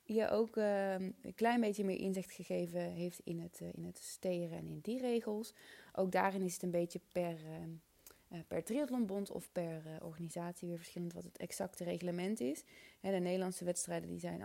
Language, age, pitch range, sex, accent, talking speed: Dutch, 20-39, 170-220 Hz, female, Dutch, 205 wpm